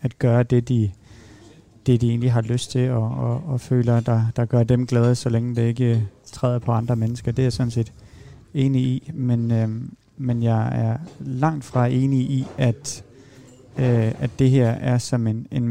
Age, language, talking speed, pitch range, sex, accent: 30-49, Danish, 200 wpm, 115-130 Hz, male, native